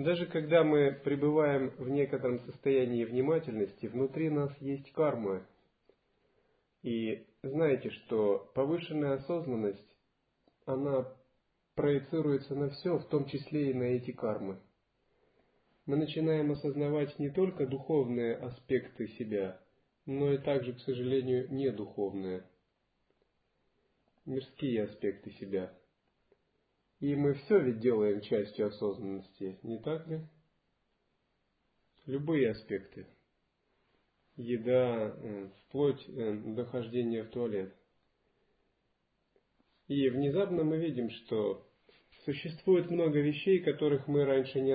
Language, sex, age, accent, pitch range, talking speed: Russian, male, 40-59, native, 115-145 Hz, 100 wpm